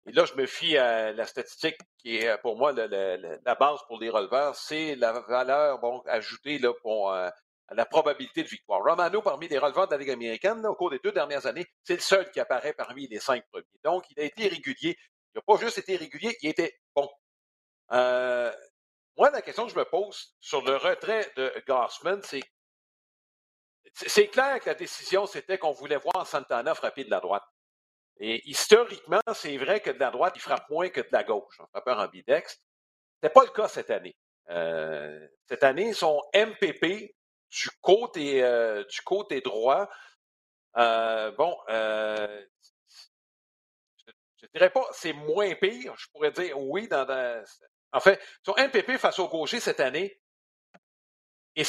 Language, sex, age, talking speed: French, male, 60-79, 175 wpm